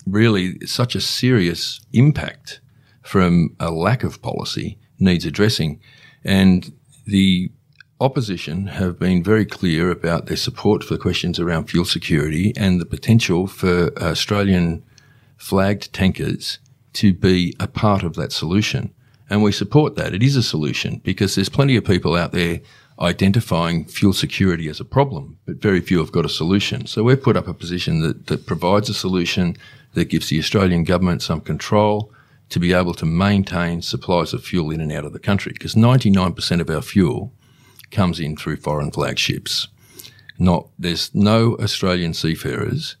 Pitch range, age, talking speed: 85-110 Hz, 50-69, 160 wpm